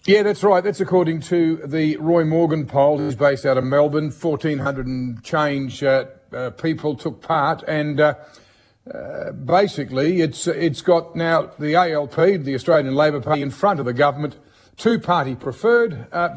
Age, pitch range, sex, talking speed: 50-69, 145-185 Hz, male, 170 wpm